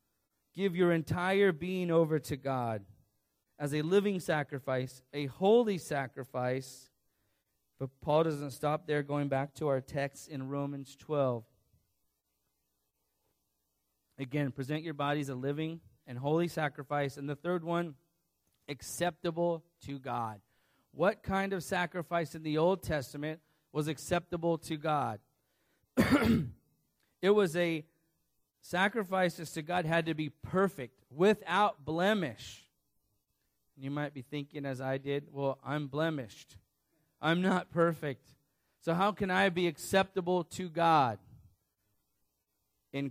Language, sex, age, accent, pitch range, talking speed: English, male, 30-49, American, 135-170 Hz, 125 wpm